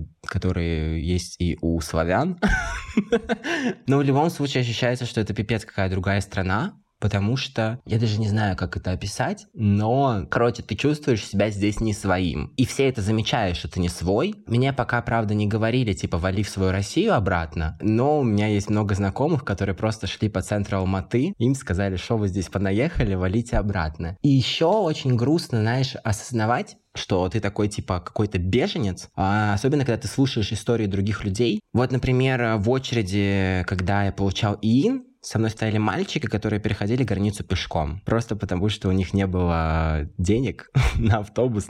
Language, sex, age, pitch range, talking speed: Russian, male, 20-39, 95-120 Hz, 165 wpm